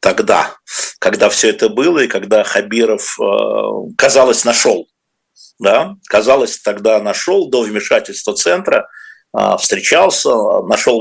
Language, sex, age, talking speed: Russian, male, 50-69, 105 wpm